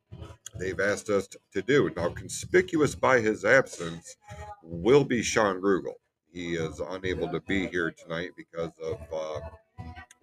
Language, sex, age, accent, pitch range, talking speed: English, male, 40-59, American, 85-105 Hz, 140 wpm